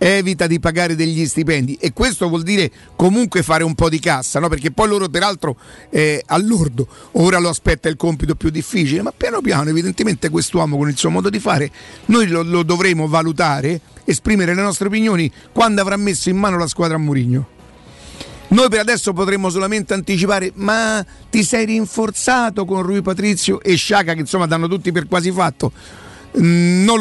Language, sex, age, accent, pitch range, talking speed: Italian, male, 50-69, native, 155-190 Hz, 180 wpm